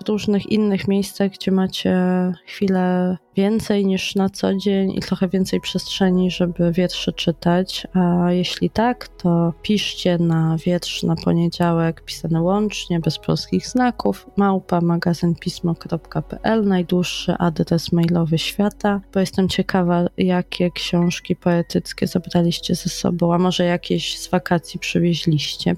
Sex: female